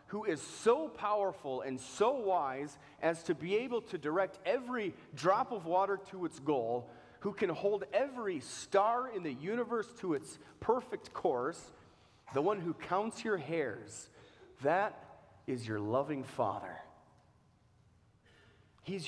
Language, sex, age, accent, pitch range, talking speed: English, male, 30-49, American, 110-155 Hz, 140 wpm